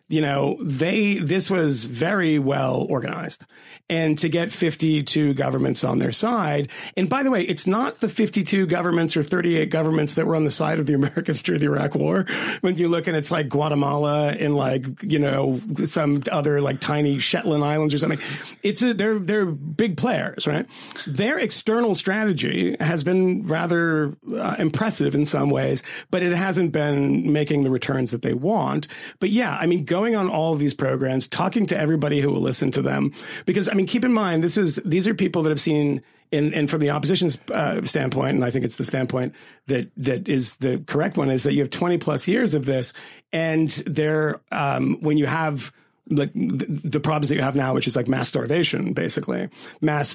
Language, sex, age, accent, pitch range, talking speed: English, male, 40-59, American, 145-180 Hz, 200 wpm